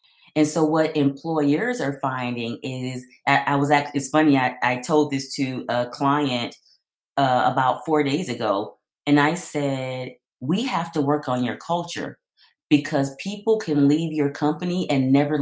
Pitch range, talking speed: 135-170 Hz, 165 wpm